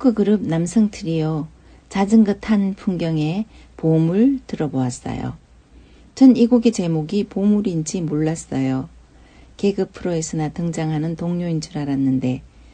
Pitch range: 150-205 Hz